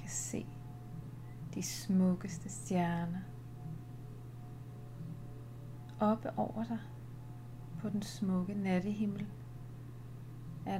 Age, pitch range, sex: 30-49, 120-140 Hz, female